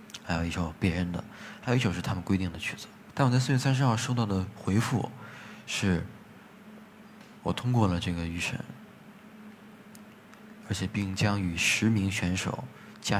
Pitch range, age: 90-140 Hz, 20-39